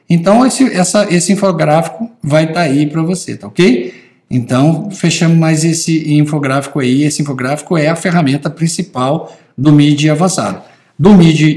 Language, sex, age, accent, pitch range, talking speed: Portuguese, male, 60-79, Brazilian, 140-185 Hz, 145 wpm